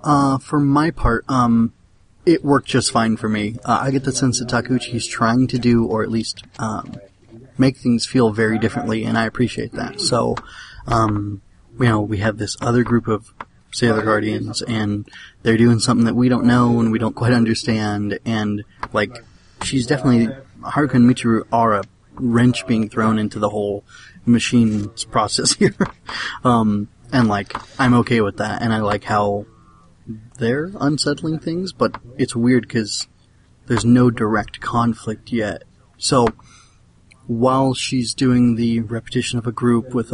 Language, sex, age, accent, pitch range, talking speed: English, male, 20-39, American, 110-120 Hz, 165 wpm